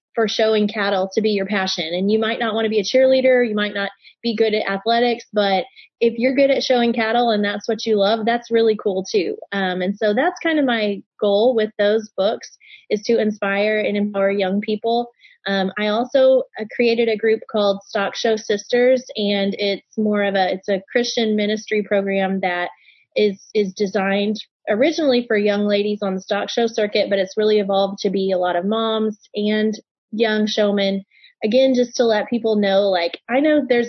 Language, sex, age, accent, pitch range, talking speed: English, female, 20-39, American, 195-230 Hz, 200 wpm